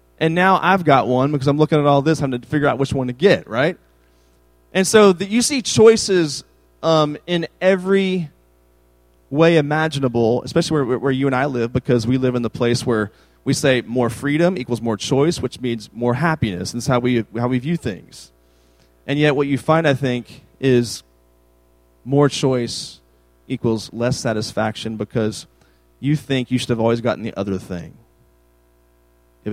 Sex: male